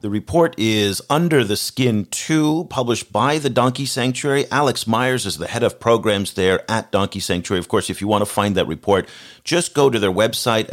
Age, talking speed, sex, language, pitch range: 40-59, 205 wpm, male, English, 90-120 Hz